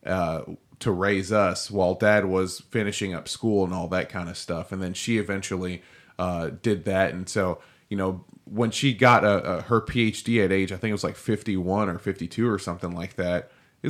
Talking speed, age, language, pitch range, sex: 210 wpm, 20-39, English, 95-125 Hz, male